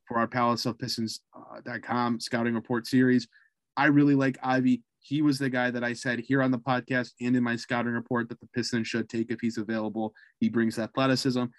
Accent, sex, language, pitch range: American, male, English, 125-145 Hz